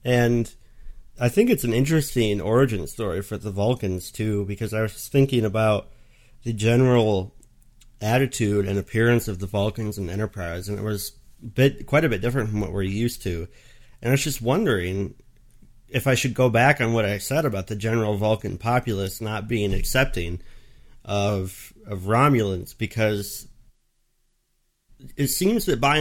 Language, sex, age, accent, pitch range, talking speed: English, male, 30-49, American, 105-125 Hz, 160 wpm